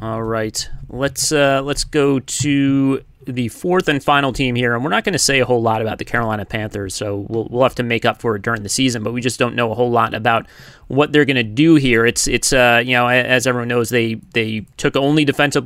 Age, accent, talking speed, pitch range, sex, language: 30-49, American, 250 wpm, 120-150 Hz, male, English